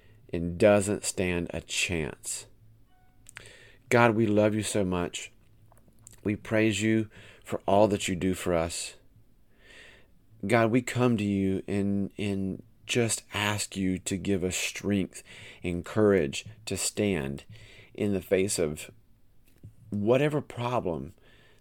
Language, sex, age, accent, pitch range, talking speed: English, male, 40-59, American, 95-115 Hz, 125 wpm